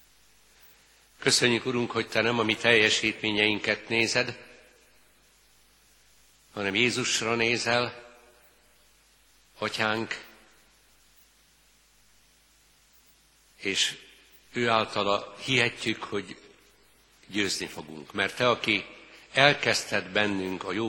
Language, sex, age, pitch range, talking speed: Hungarian, male, 60-79, 100-120 Hz, 80 wpm